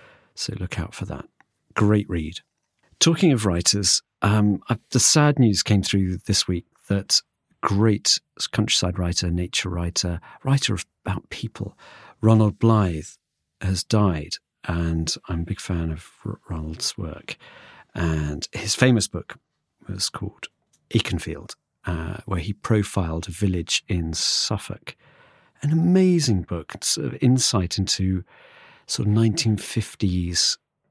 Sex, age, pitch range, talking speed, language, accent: male, 40-59, 85-105 Hz, 130 wpm, English, British